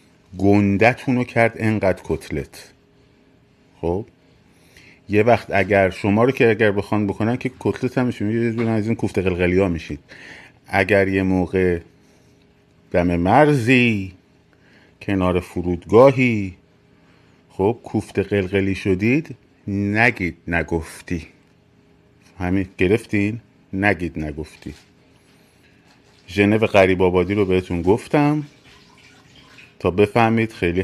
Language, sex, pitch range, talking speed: Persian, male, 90-120 Hz, 95 wpm